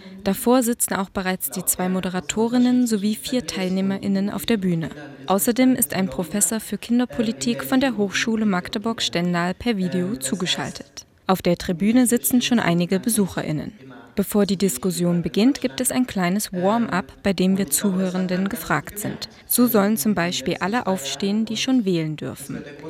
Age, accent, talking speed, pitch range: 20-39, German, 150 wpm, 185-230 Hz